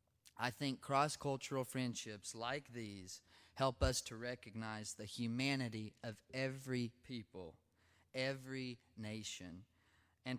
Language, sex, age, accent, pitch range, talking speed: English, male, 30-49, American, 100-125 Hz, 105 wpm